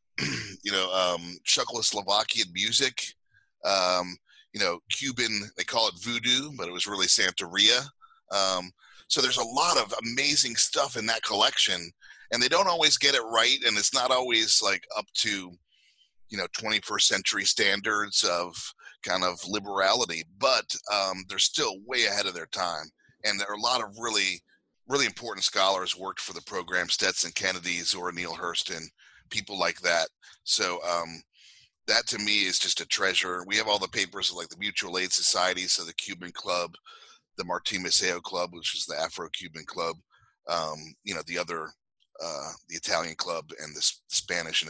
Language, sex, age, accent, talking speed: English, male, 30-49, American, 175 wpm